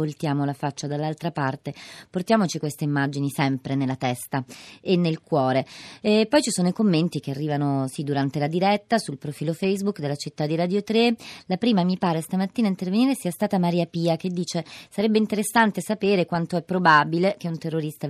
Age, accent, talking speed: 30-49, native, 185 wpm